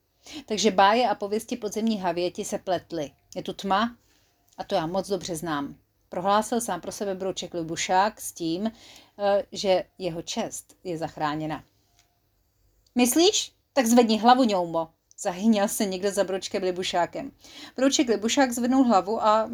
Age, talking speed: 30-49, 140 wpm